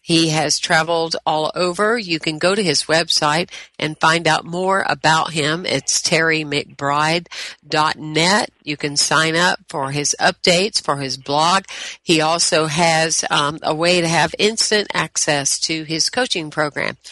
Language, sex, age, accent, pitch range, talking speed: English, female, 50-69, American, 145-175 Hz, 150 wpm